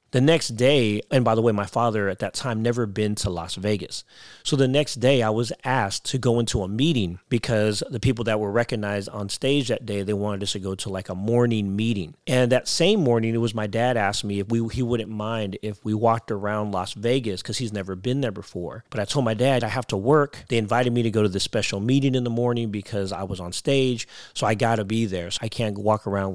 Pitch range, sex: 100-120 Hz, male